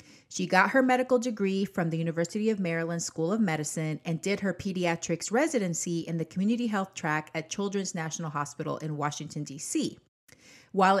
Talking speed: 170 wpm